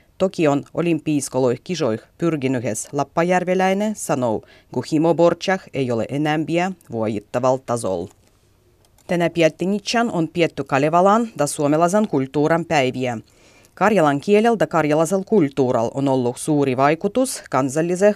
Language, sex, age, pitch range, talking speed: Finnish, female, 30-49, 130-190 Hz, 100 wpm